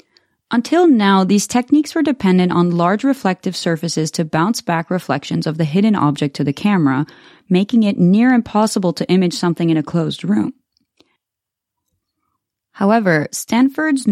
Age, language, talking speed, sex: 20-39, English, 145 wpm, female